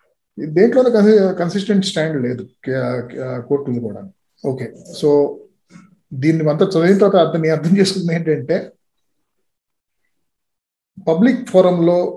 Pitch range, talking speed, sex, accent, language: 150-205 Hz, 85 wpm, male, native, Telugu